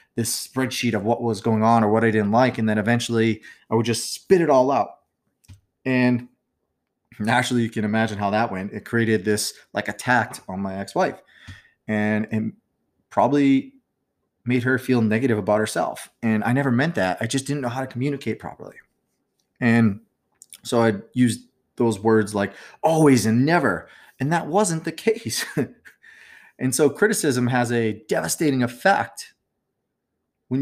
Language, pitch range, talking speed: English, 110-130 Hz, 165 wpm